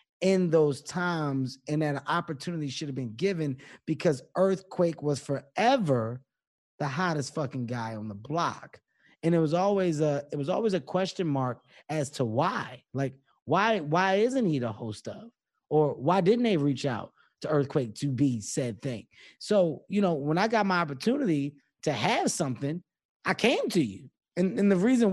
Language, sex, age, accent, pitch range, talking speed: English, male, 20-39, American, 145-225 Hz, 175 wpm